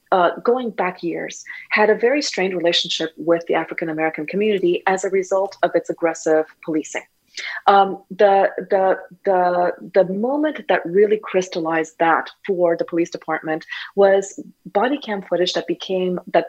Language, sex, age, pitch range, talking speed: English, female, 30-49, 175-210 Hz, 155 wpm